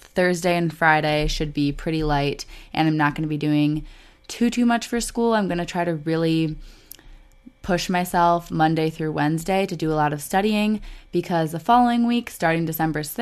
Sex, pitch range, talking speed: female, 150-180 Hz, 190 wpm